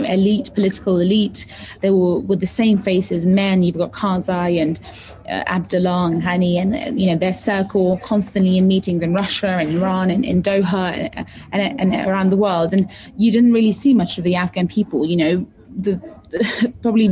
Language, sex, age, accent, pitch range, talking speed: English, female, 20-39, British, 180-205 Hz, 190 wpm